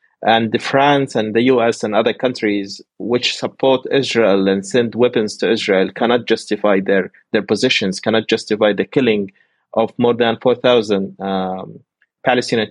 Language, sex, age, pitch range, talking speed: English, male, 30-49, 100-115 Hz, 145 wpm